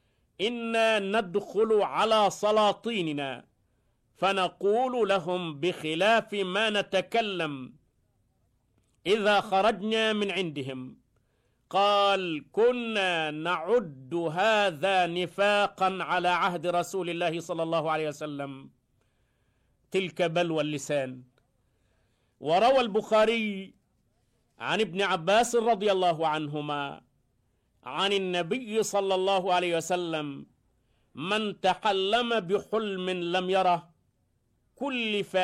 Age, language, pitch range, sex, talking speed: 50-69, Arabic, 150-205 Hz, male, 85 wpm